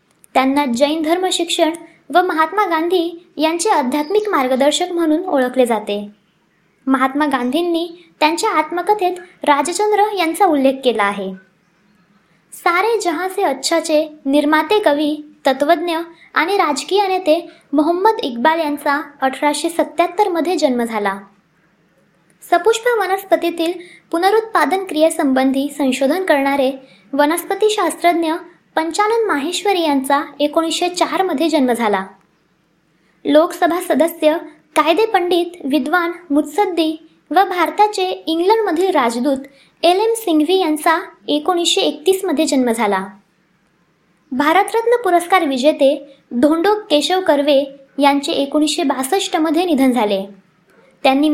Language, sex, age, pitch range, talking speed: Marathi, male, 20-39, 275-350 Hz, 95 wpm